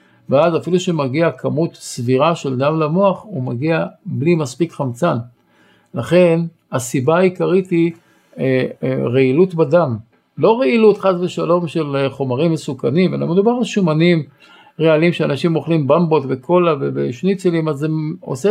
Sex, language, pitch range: male, Hebrew, 140-175 Hz